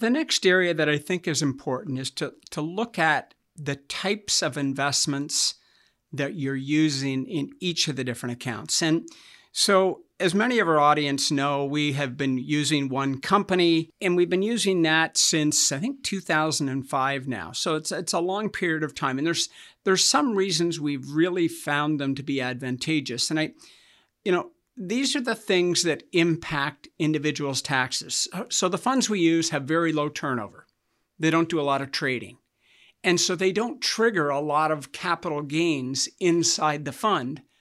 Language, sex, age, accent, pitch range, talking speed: English, male, 50-69, American, 145-185 Hz, 175 wpm